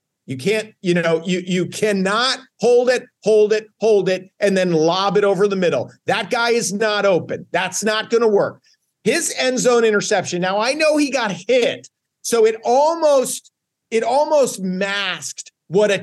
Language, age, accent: English, 50-69, American